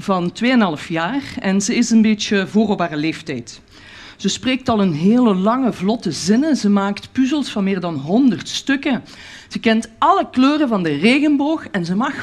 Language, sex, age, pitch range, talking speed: Dutch, female, 40-59, 170-275 Hz, 175 wpm